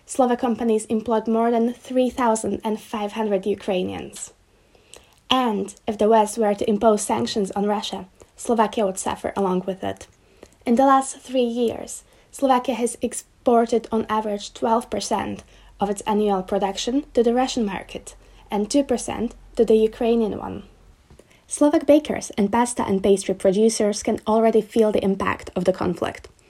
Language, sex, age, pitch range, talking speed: Slovak, female, 20-39, 200-245 Hz, 145 wpm